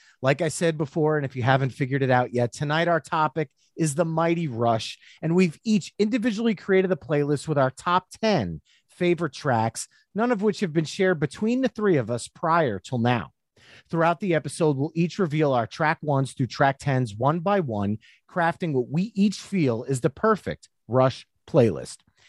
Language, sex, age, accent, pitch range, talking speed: English, male, 30-49, American, 130-185 Hz, 190 wpm